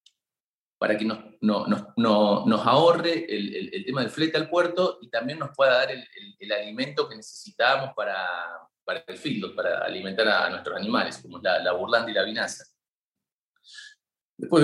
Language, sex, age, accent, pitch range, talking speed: Spanish, male, 30-49, Argentinian, 105-155 Hz, 180 wpm